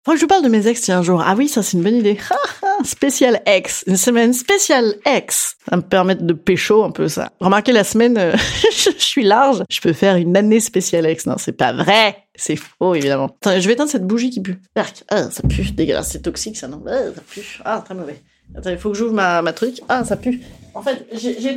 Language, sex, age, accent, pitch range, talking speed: French, female, 30-49, French, 175-245 Hz, 250 wpm